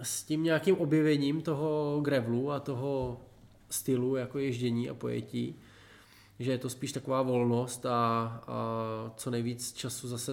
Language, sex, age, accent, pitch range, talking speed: Czech, male, 20-39, native, 115-135 Hz, 145 wpm